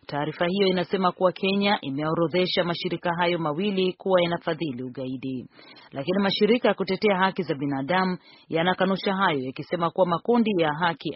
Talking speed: 150 wpm